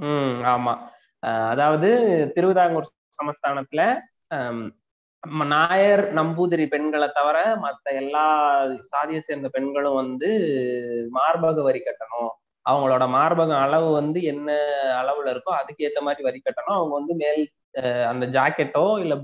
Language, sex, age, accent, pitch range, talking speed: Tamil, male, 20-39, native, 130-155 Hz, 110 wpm